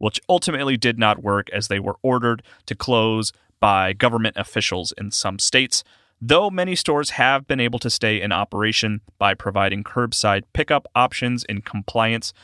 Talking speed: 165 wpm